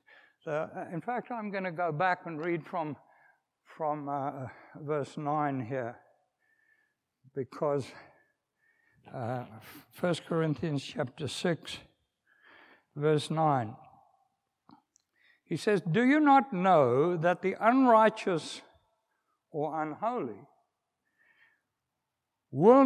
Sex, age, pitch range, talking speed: male, 60-79, 165-245 Hz, 95 wpm